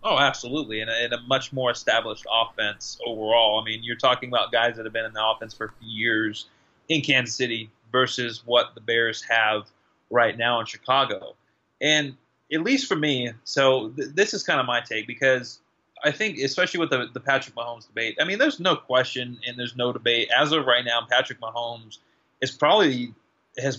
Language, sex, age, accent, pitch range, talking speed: English, male, 30-49, American, 115-135 Hz, 200 wpm